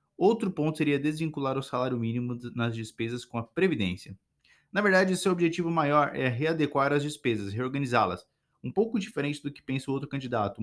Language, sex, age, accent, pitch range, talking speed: Portuguese, male, 20-39, Brazilian, 120-150 Hz, 175 wpm